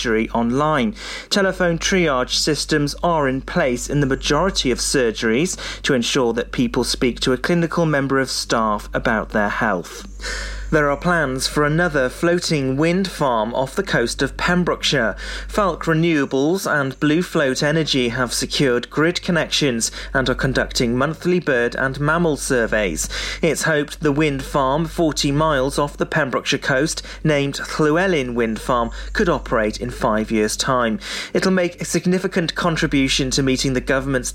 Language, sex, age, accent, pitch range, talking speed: English, male, 40-59, British, 130-165 Hz, 150 wpm